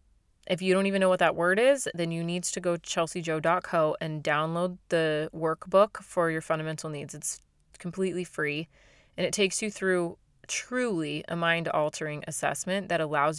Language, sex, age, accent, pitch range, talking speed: English, female, 30-49, American, 155-185 Hz, 170 wpm